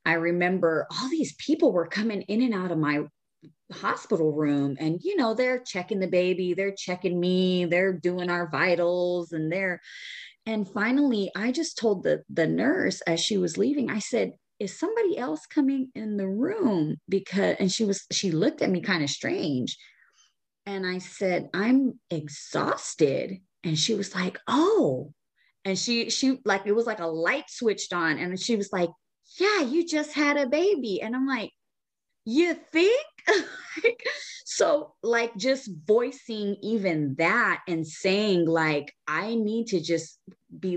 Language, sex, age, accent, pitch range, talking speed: English, female, 30-49, American, 170-255 Hz, 165 wpm